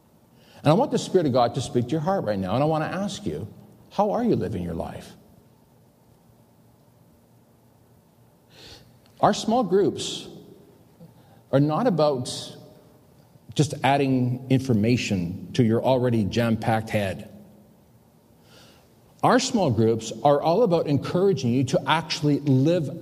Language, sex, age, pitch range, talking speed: English, male, 40-59, 115-155 Hz, 135 wpm